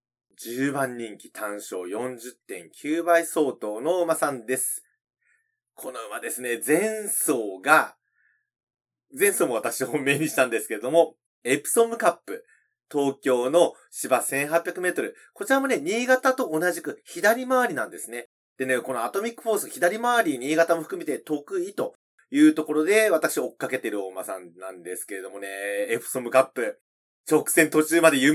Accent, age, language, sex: native, 30-49, Japanese, male